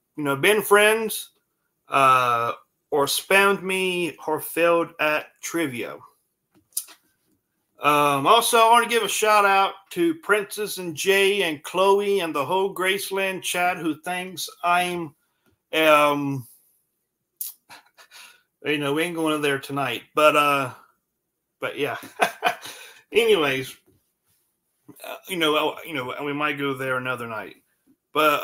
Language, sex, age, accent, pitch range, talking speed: English, male, 40-59, American, 145-200 Hz, 125 wpm